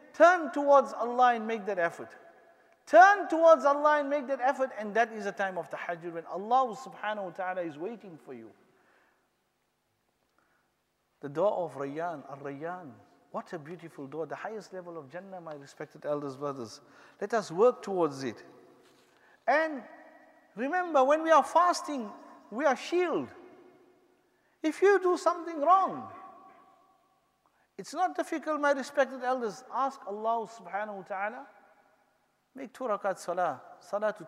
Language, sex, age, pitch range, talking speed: English, male, 50-69, 170-285 Hz, 145 wpm